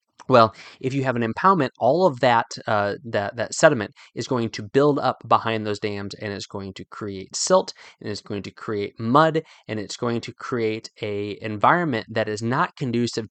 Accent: American